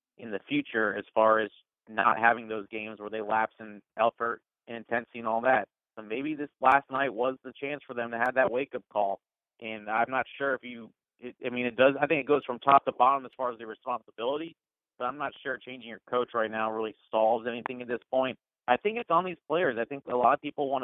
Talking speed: 250 wpm